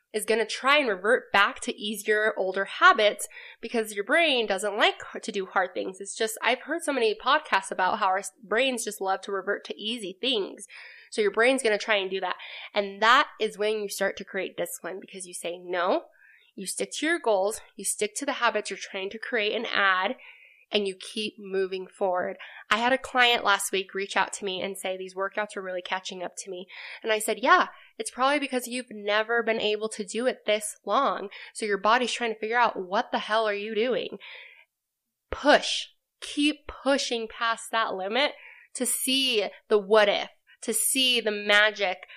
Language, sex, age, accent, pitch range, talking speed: English, female, 20-39, American, 195-245 Hz, 205 wpm